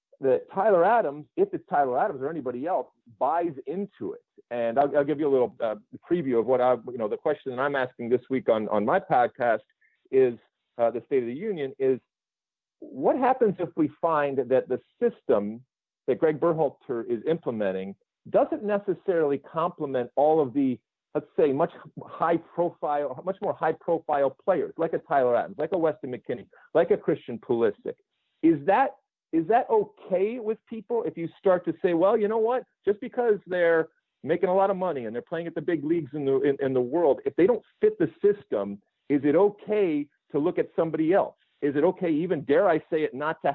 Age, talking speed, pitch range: 40-59, 200 wpm, 140-205 Hz